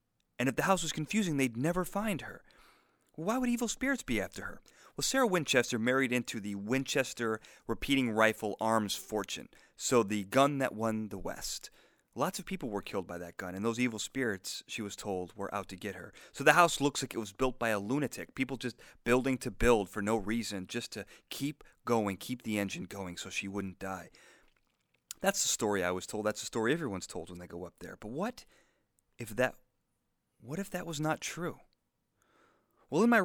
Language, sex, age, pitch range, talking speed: English, male, 30-49, 110-150 Hz, 210 wpm